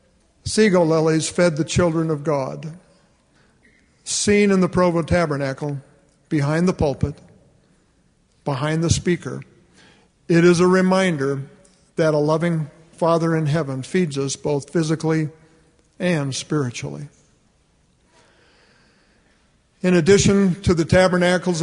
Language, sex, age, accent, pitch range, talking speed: English, male, 50-69, American, 145-175 Hz, 110 wpm